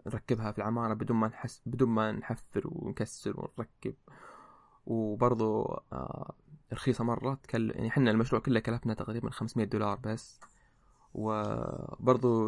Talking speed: 125 wpm